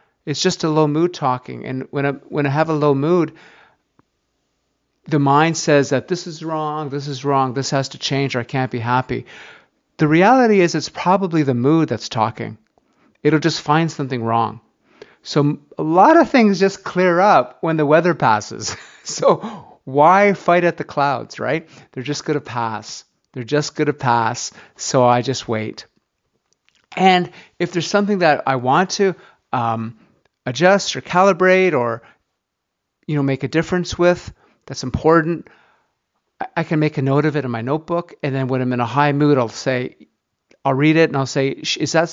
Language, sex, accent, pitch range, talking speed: English, male, American, 125-165 Hz, 185 wpm